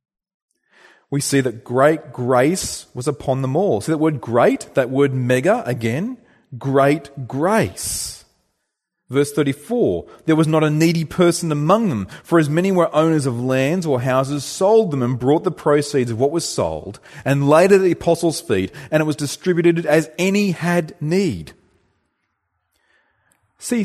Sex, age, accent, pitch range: male, 30-49, Australian, 125-165 Hz